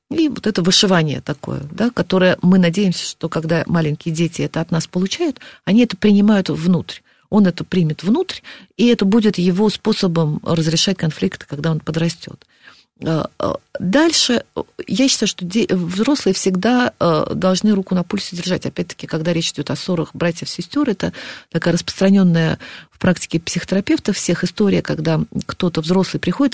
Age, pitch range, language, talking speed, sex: 40-59, 165-210 Hz, Russian, 145 wpm, female